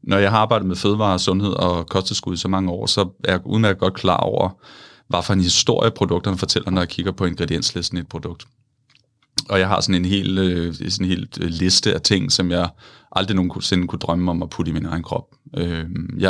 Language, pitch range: Danish, 90-110 Hz